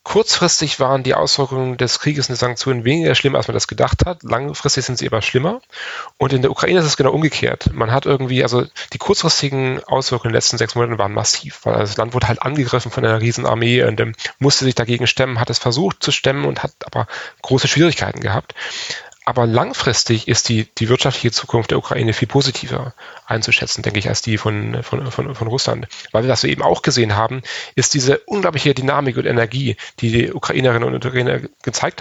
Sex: male